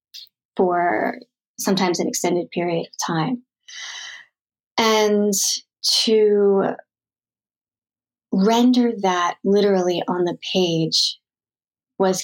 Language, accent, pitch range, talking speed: English, American, 175-205 Hz, 80 wpm